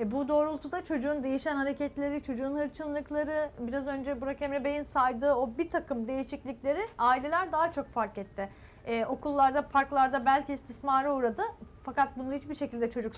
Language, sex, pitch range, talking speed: Turkish, female, 240-300 Hz, 150 wpm